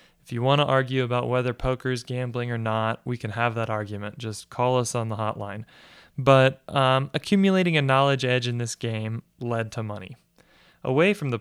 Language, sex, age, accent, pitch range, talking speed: English, male, 20-39, American, 115-140 Hz, 200 wpm